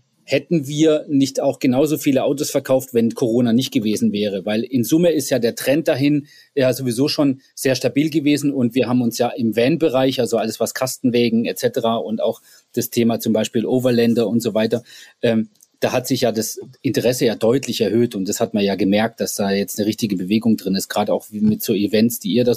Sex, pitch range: male, 115-140 Hz